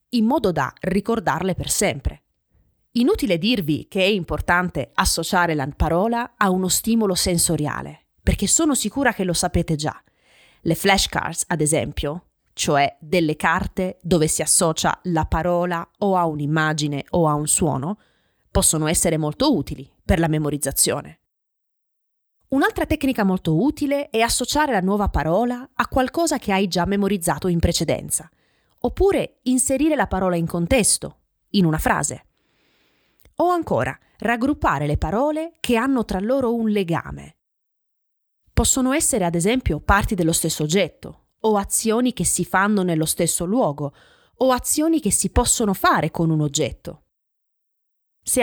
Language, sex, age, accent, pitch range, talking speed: Italian, female, 20-39, native, 165-235 Hz, 140 wpm